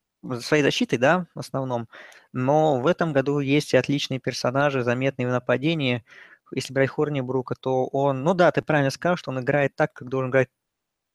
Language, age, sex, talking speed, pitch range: Russian, 20-39, male, 180 wpm, 120-145 Hz